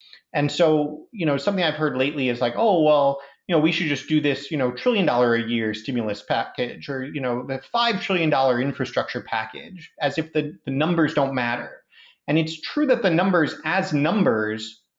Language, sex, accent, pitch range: English, male, American, 135-170 Hz